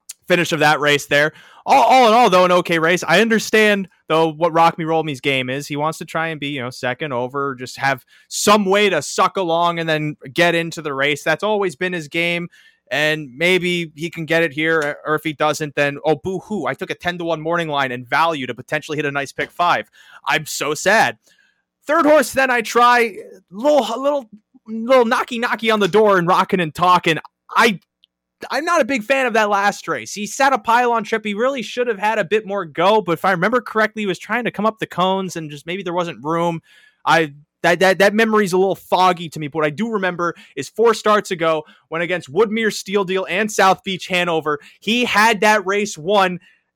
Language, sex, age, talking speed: English, male, 20-39, 235 wpm